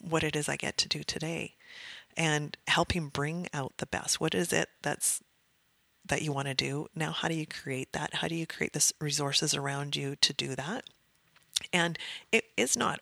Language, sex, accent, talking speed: English, female, American, 205 wpm